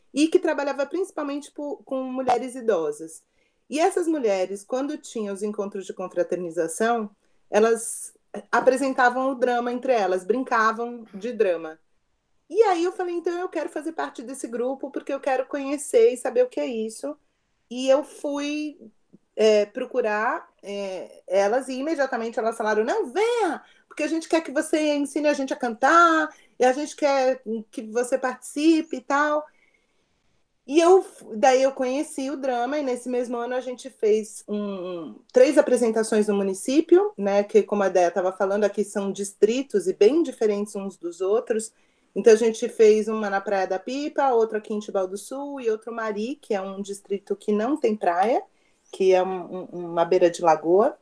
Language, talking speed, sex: Portuguese, 175 wpm, female